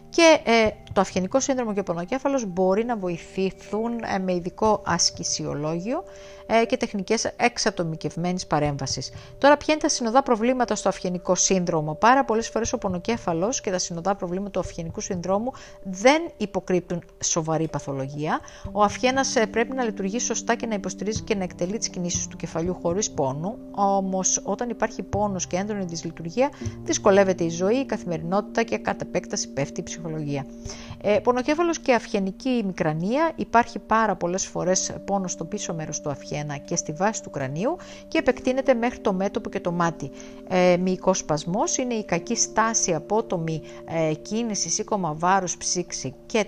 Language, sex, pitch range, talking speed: English, female, 175-235 Hz, 150 wpm